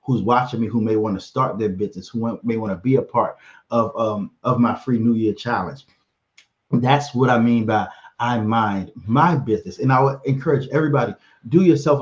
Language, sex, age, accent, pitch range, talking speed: English, male, 30-49, American, 115-140 Hz, 205 wpm